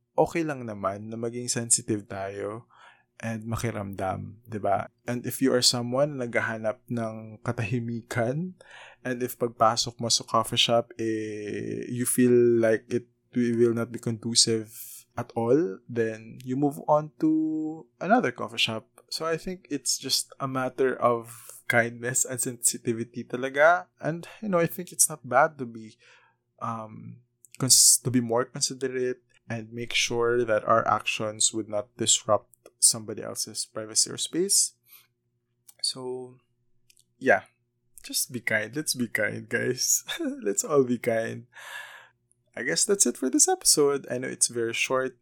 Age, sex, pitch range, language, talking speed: 20-39, male, 115-130 Hz, Filipino, 150 wpm